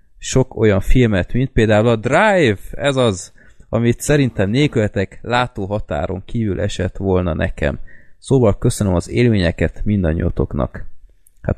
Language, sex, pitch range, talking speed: Hungarian, male, 90-115 Hz, 120 wpm